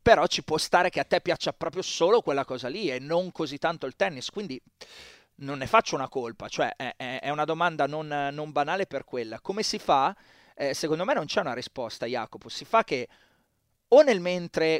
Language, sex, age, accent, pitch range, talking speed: Italian, male, 30-49, native, 130-165 Hz, 210 wpm